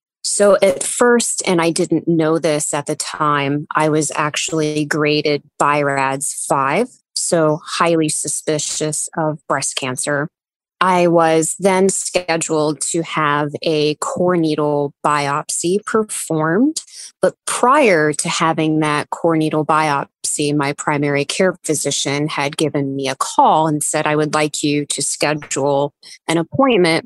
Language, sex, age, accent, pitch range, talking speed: English, female, 20-39, American, 150-175 Hz, 135 wpm